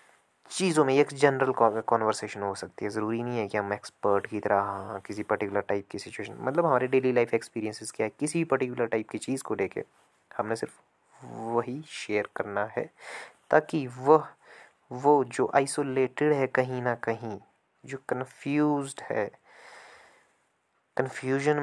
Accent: native